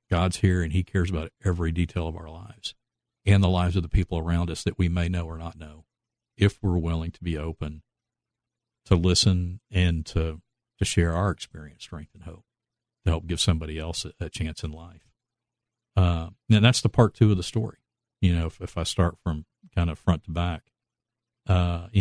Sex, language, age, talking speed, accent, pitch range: male, English, 50-69, 205 wpm, American, 80-95 Hz